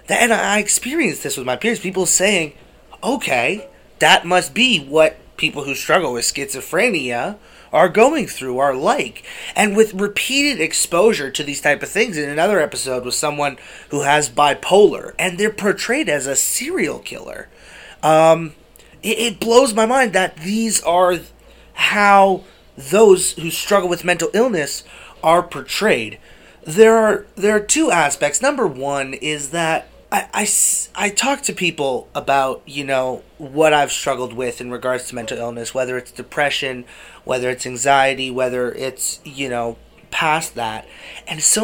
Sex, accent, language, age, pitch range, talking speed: male, American, English, 30-49, 130-185 Hz, 155 wpm